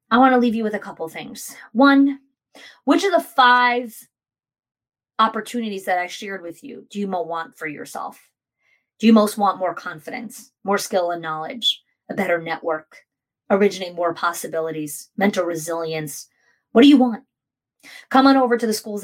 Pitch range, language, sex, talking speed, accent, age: 180-230 Hz, English, female, 170 wpm, American, 30-49